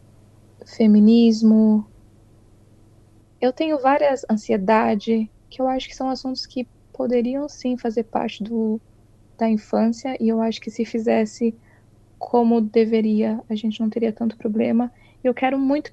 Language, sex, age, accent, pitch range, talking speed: Portuguese, female, 10-29, Brazilian, 215-245 Hz, 130 wpm